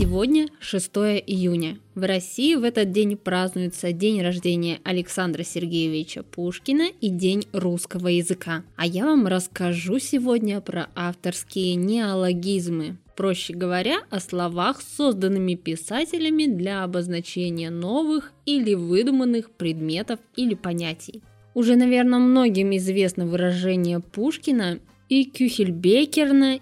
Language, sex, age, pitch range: Russian, female, 20-39, 175-235 Hz